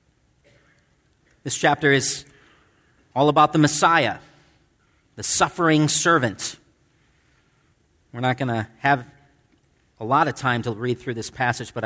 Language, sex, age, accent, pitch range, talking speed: English, male, 40-59, American, 120-155 Hz, 125 wpm